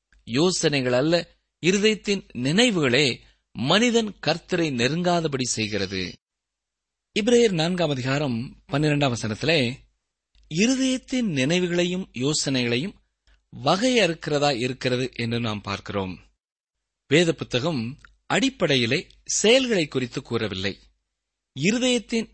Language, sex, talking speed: Tamil, male, 75 wpm